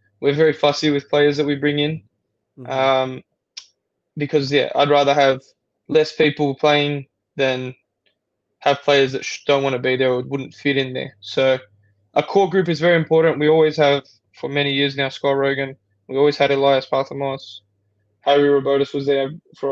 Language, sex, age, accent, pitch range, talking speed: English, male, 10-29, Australian, 130-150 Hz, 175 wpm